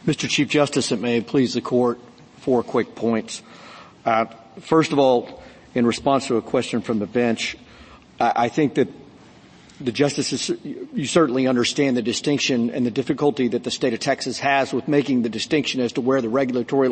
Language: English